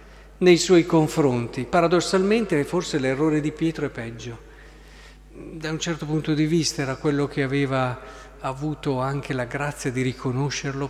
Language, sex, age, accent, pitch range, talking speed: Italian, male, 50-69, native, 140-185 Hz, 145 wpm